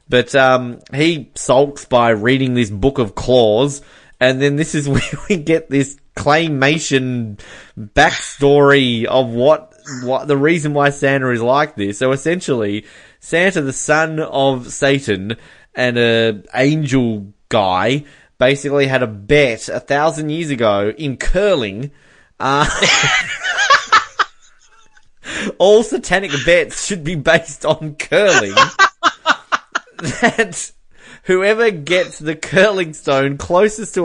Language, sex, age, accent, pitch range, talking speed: English, male, 20-39, Australian, 125-155 Hz, 120 wpm